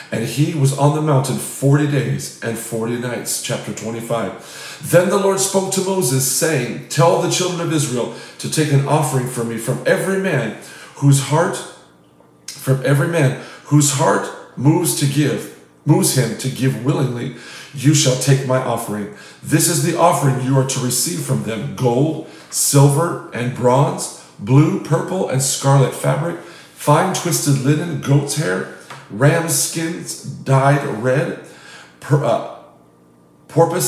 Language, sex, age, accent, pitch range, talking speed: English, male, 50-69, American, 125-160 Hz, 145 wpm